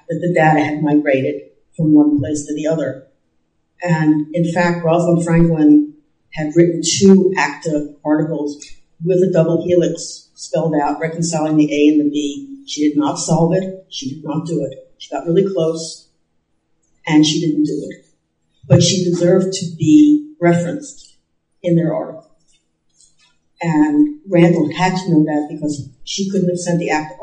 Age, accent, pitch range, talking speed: 50-69, American, 150-175 Hz, 165 wpm